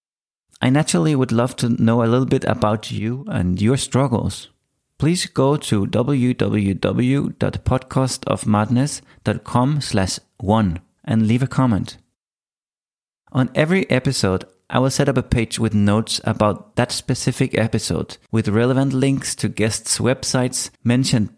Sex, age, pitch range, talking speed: male, 30-49, 110-135 Hz, 125 wpm